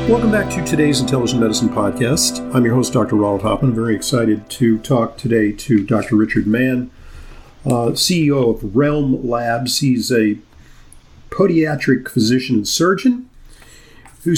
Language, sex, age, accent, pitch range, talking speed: English, male, 50-69, American, 110-140 Hz, 145 wpm